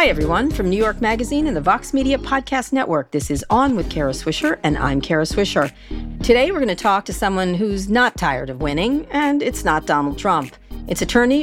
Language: English